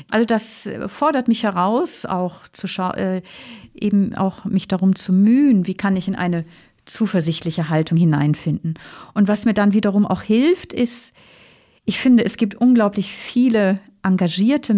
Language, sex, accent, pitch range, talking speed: German, female, German, 190-225 Hz, 155 wpm